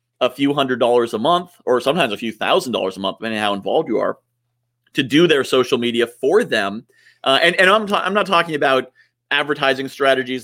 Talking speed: 220 wpm